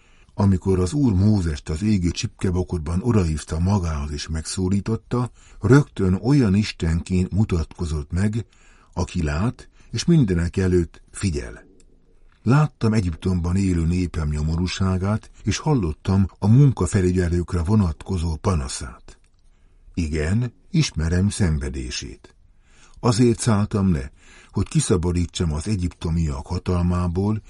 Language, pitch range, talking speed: Hungarian, 80-105 Hz, 95 wpm